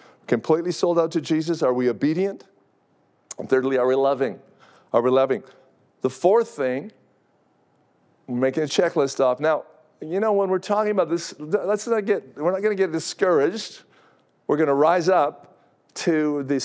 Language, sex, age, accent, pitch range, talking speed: English, male, 50-69, American, 130-170 Hz, 175 wpm